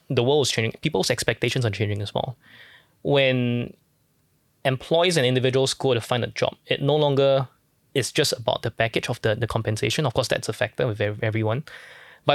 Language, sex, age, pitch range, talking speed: English, male, 10-29, 115-135 Hz, 190 wpm